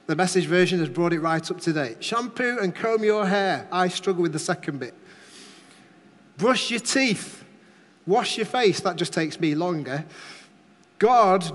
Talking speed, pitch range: 165 wpm, 165-215 Hz